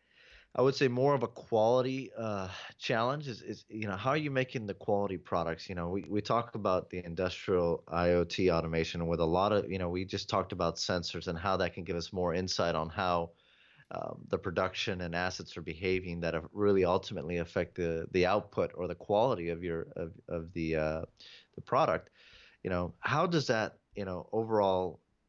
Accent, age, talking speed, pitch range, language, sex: American, 30-49, 200 wpm, 85-110 Hz, English, male